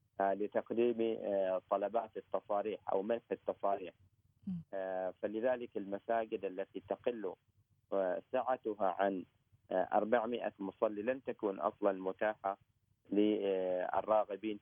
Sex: male